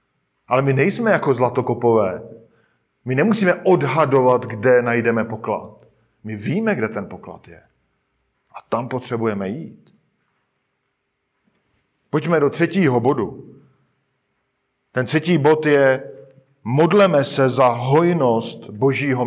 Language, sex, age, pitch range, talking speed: Czech, male, 50-69, 125-155 Hz, 105 wpm